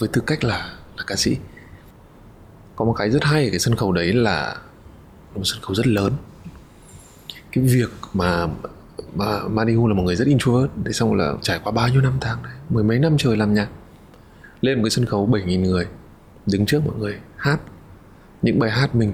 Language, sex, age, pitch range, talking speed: Vietnamese, male, 20-39, 100-120 Hz, 200 wpm